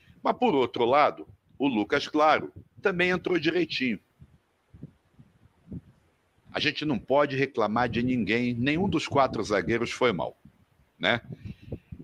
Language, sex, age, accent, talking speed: Portuguese, male, 60-79, Brazilian, 120 wpm